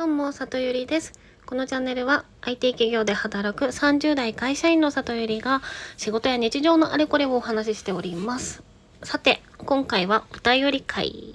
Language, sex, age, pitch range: Japanese, female, 20-39, 215-285 Hz